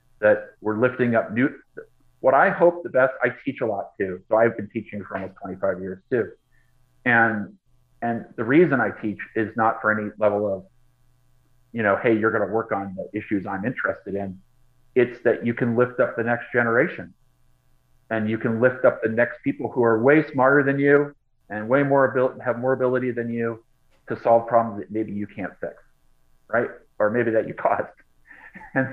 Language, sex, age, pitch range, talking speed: English, male, 40-59, 110-130 Hz, 200 wpm